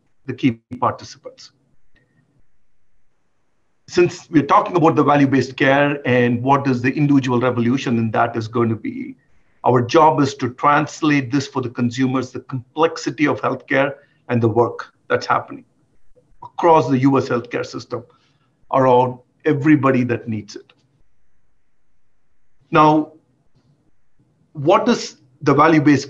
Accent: Indian